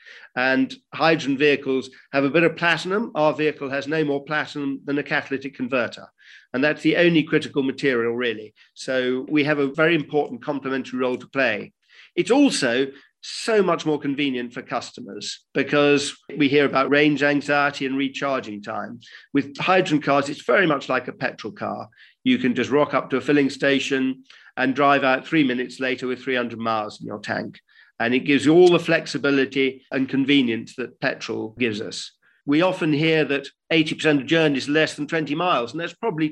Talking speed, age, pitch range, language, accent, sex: 180 wpm, 50-69, 135-155 Hz, English, British, male